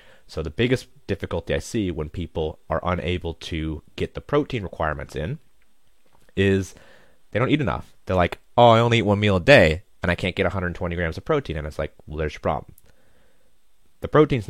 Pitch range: 80-105 Hz